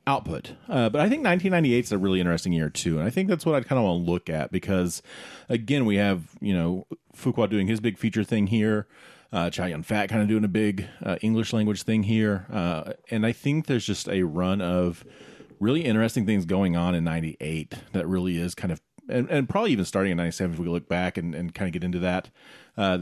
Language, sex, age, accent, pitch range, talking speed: English, male, 40-59, American, 90-115 Hz, 235 wpm